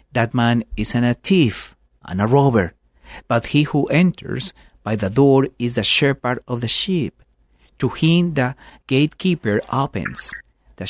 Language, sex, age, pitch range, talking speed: English, male, 40-59, 105-140 Hz, 155 wpm